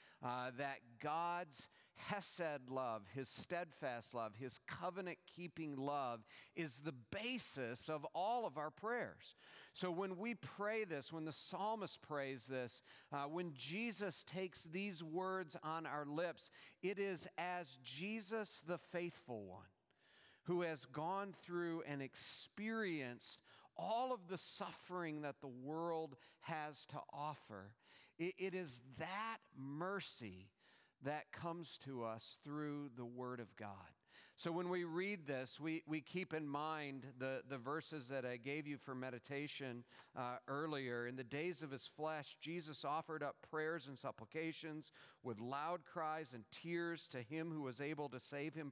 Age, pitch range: 40-59, 130-175 Hz